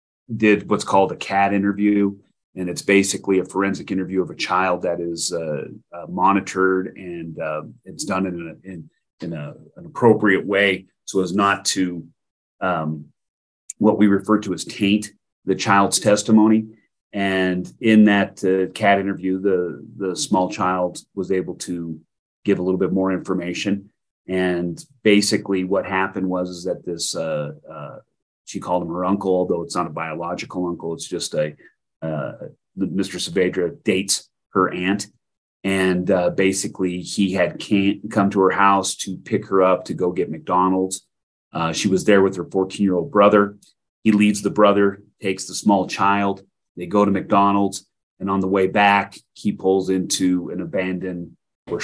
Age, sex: 30-49, male